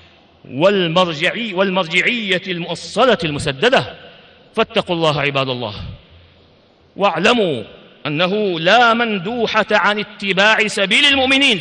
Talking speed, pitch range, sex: 85 wpm, 165-215 Hz, male